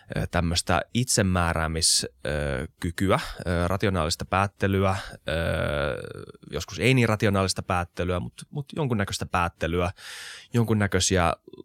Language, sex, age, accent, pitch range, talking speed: Finnish, male, 20-39, native, 85-105 Hz, 70 wpm